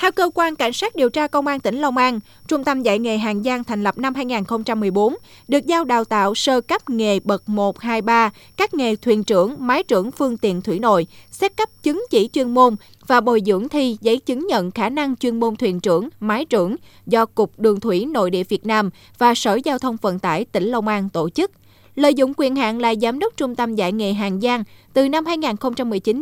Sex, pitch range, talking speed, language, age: female, 210-270 Hz, 225 wpm, Vietnamese, 20-39